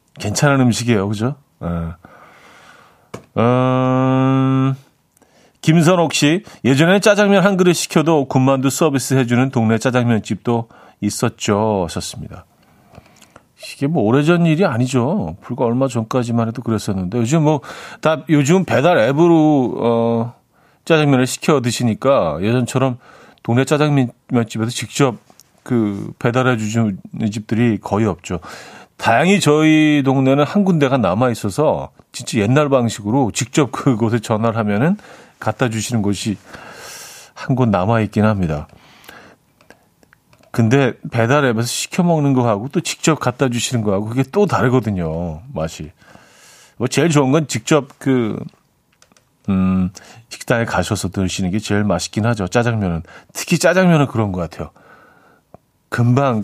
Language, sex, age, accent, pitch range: Korean, male, 40-59, native, 110-145 Hz